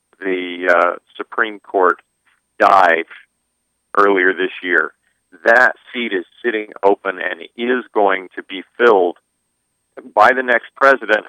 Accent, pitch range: American, 95-120 Hz